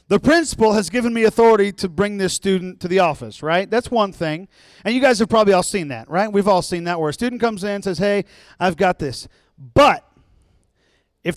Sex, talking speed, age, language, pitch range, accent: male, 225 wpm, 40-59, English, 170-215 Hz, American